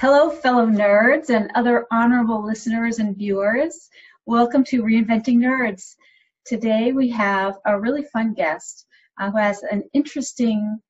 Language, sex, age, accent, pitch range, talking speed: English, female, 40-59, American, 200-255 Hz, 130 wpm